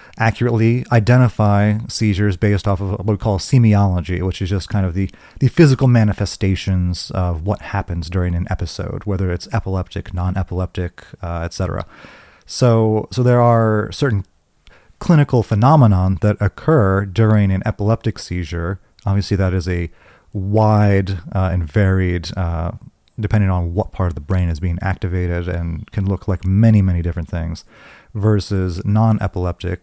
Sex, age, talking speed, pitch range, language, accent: male, 30-49, 150 wpm, 90-105 Hz, English, American